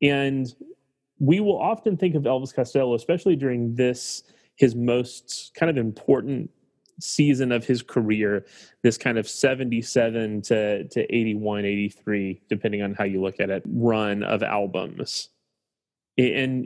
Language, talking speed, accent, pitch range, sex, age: English, 140 wpm, American, 110-135 Hz, male, 30-49